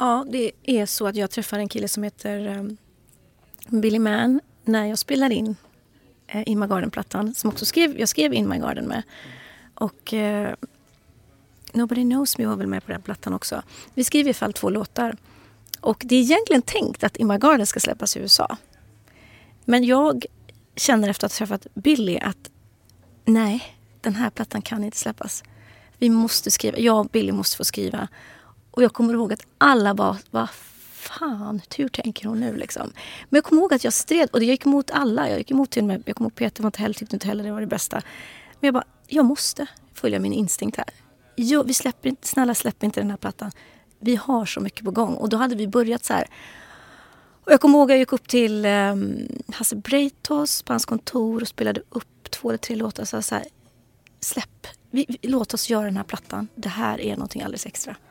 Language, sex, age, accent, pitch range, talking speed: Swedish, female, 30-49, native, 205-255 Hz, 215 wpm